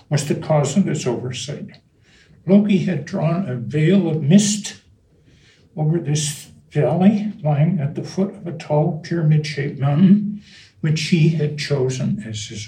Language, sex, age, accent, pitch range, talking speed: English, male, 60-79, American, 135-175 Hz, 145 wpm